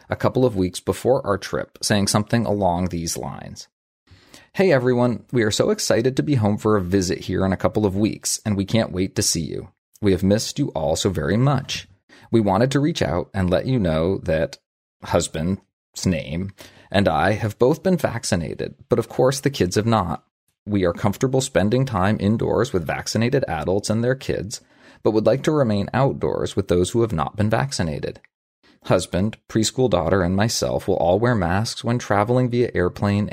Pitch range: 90-125 Hz